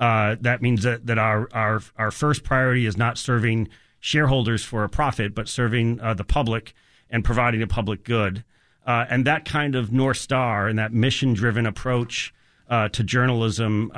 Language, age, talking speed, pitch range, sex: English, 40-59, 180 wpm, 110-130 Hz, male